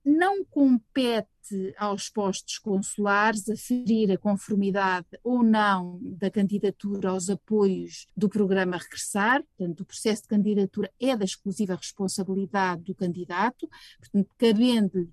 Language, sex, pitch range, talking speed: Portuguese, female, 185-215 Hz, 115 wpm